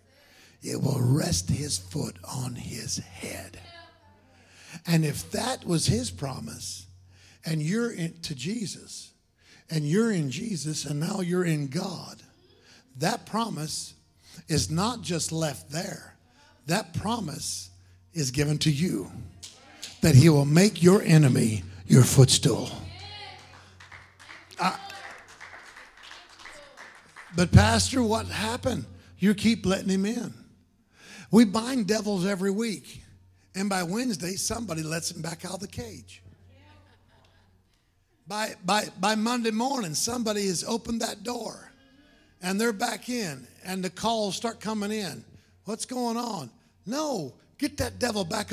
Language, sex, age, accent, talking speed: English, male, 50-69, American, 125 wpm